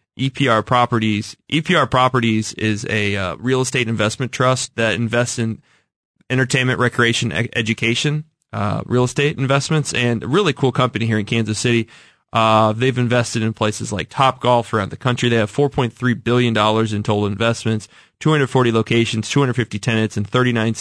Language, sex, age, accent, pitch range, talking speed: English, male, 20-39, American, 110-125 Hz, 155 wpm